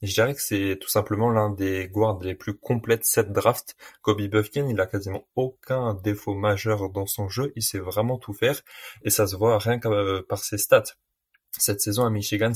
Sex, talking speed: male, 210 wpm